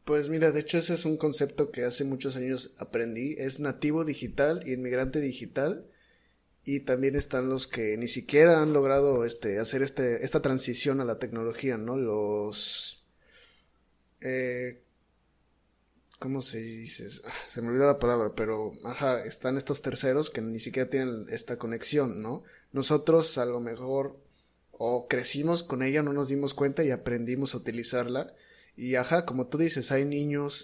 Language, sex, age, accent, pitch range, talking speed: Spanish, male, 20-39, Mexican, 125-145 Hz, 165 wpm